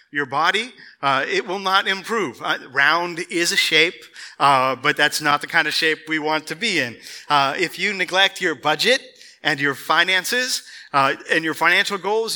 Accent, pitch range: American, 135-195 Hz